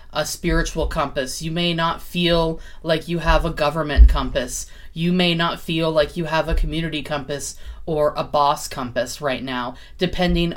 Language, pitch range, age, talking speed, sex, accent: English, 145-175 Hz, 30-49, 170 wpm, female, American